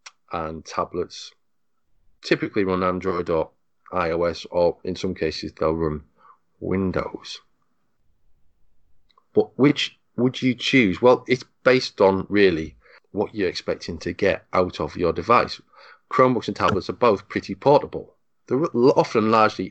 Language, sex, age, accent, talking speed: English, male, 40-59, British, 130 wpm